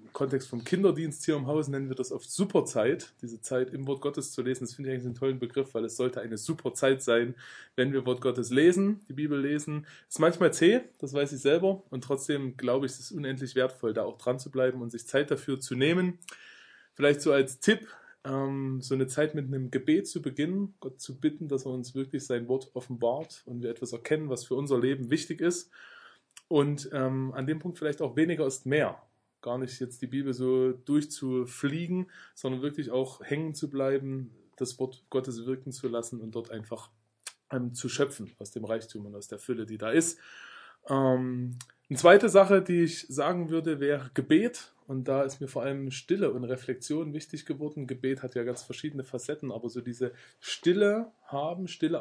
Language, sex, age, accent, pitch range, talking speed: German, male, 20-39, German, 125-150 Hz, 200 wpm